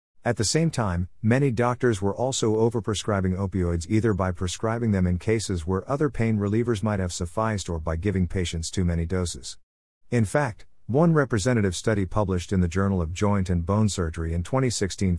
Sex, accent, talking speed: male, American, 180 wpm